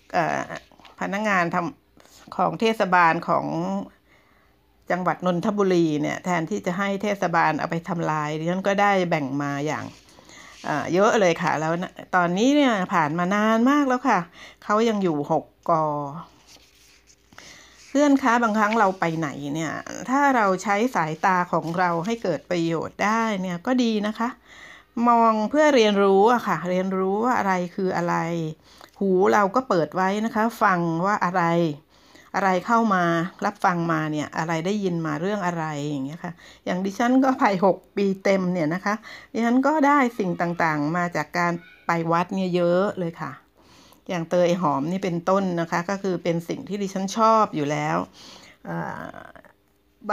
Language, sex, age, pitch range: Thai, female, 60-79, 170-215 Hz